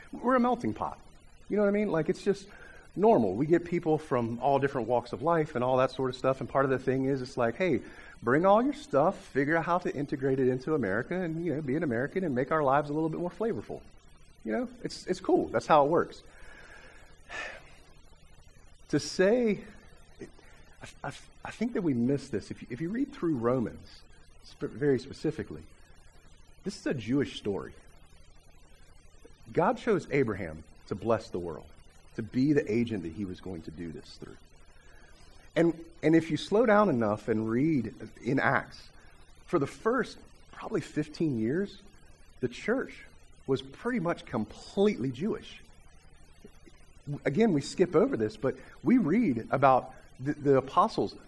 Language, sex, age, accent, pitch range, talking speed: English, male, 40-59, American, 115-175 Hz, 180 wpm